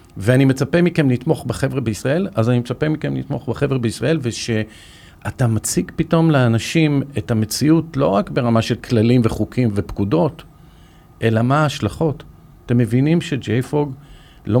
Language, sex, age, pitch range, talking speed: Hebrew, male, 50-69, 105-140 Hz, 135 wpm